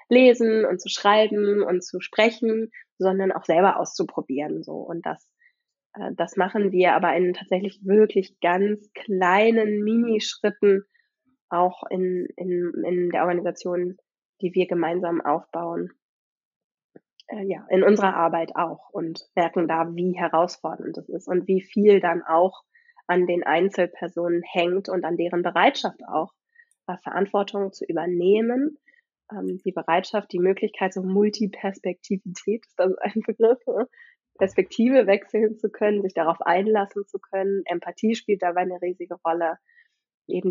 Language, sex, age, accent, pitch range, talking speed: German, female, 20-39, German, 180-215 Hz, 135 wpm